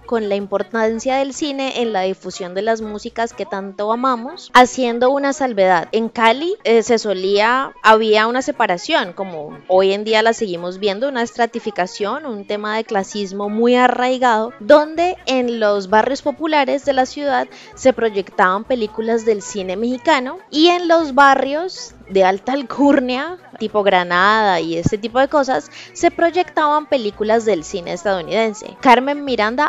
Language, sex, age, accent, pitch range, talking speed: Spanish, female, 20-39, Colombian, 205-265 Hz, 155 wpm